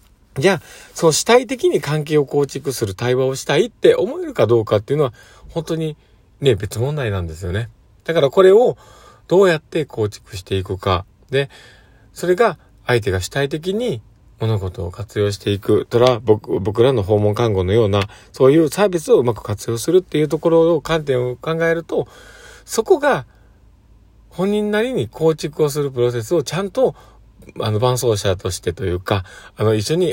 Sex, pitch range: male, 100-150 Hz